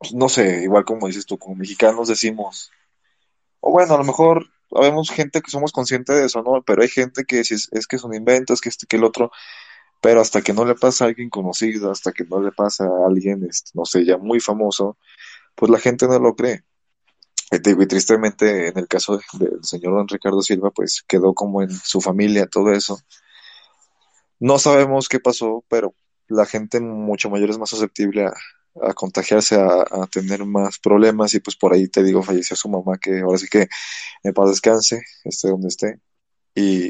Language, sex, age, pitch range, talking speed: Spanish, male, 20-39, 95-115 Hz, 200 wpm